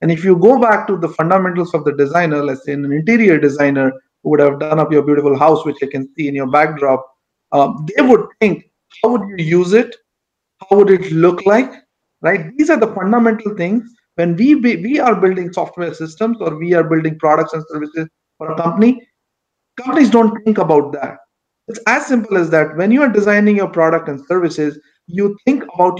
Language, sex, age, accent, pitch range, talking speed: English, male, 50-69, Indian, 160-220 Hz, 210 wpm